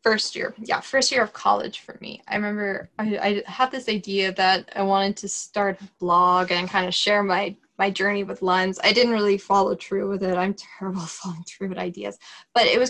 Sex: female